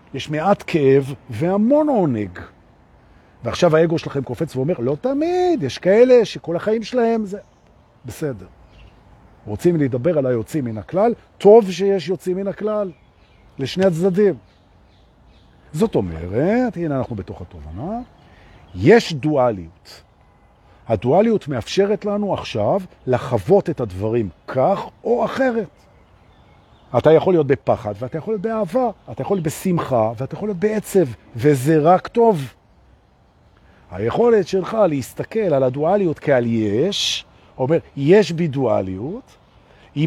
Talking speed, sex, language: 110 wpm, male, Hebrew